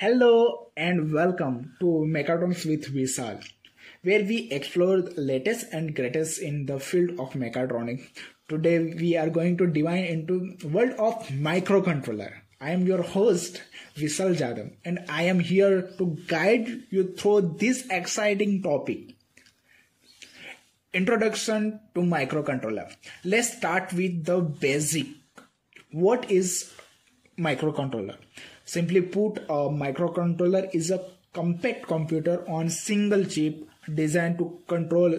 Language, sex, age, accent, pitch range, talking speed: English, male, 20-39, Indian, 150-190 Hz, 125 wpm